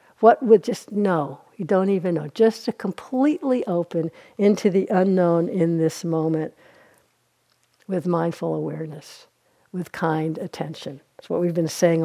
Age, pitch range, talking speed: 60-79, 170-220 Hz, 145 wpm